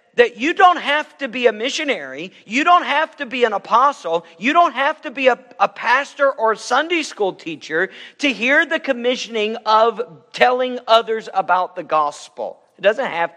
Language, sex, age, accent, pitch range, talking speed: English, male, 50-69, American, 170-275 Hz, 180 wpm